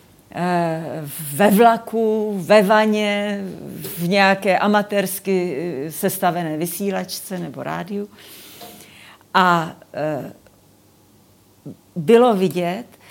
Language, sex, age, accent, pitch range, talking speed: Czech, female, 50-69, native, 155-205 Hz, 65 wpm